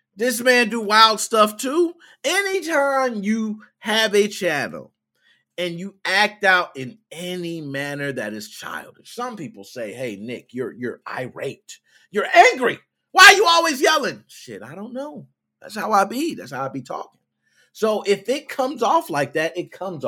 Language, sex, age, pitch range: English, male, 30-49, 165-255 Hz